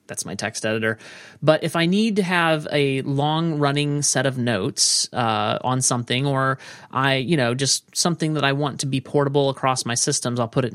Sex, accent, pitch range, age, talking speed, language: male, American, 120-150 Hz, 30-49, 200 wpm, English